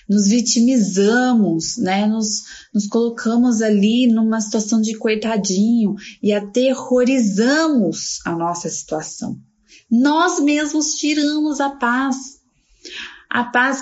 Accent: Brazilian